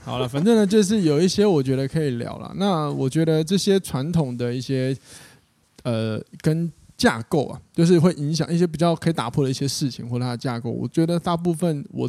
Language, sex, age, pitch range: Chinese, male, 20-39, 120-155 Hz